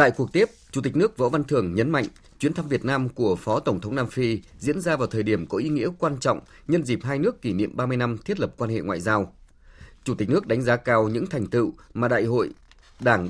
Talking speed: 260 wpm